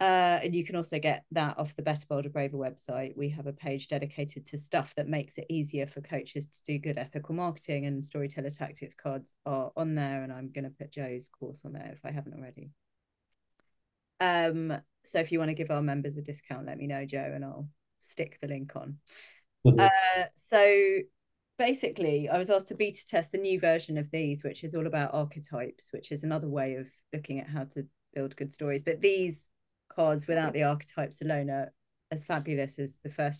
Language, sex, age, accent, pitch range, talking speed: English, female, 30-49, British, 140-160 Hz, 210 wpm